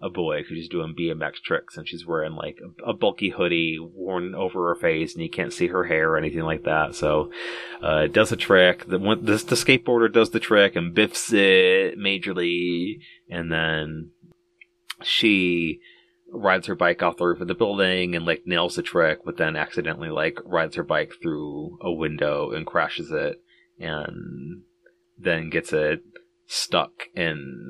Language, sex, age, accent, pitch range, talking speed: English, male, 30-49, American, 85-110 Hz, 180 wpm